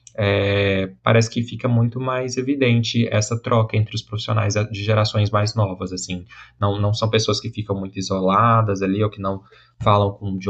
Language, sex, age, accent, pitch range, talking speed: Portuguese, male, 10-29, Brazilian, 100-120 Hz, 170 wpm